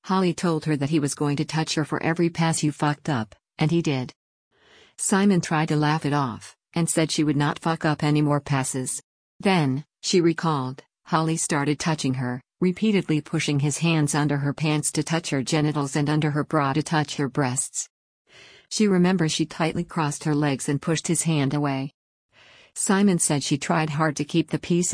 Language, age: English, 50-69